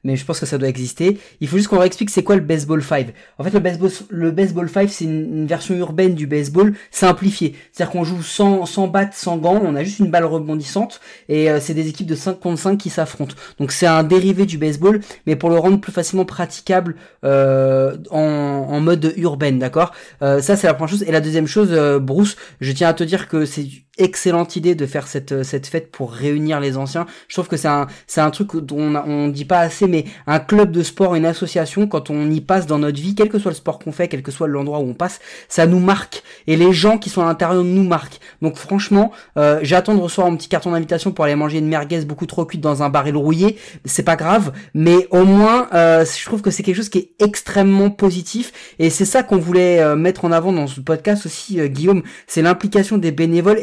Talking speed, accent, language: 245 wpm, French, French